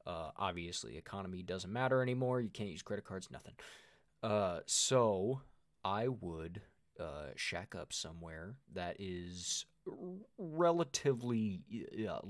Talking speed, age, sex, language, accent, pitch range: 120 wpm, 20-39, male, English, American, 90-120 Hz